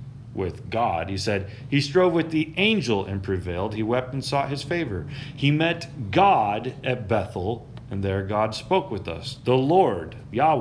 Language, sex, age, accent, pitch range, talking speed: English, male, 30-49, American, 105-135 Hz, 175 wpm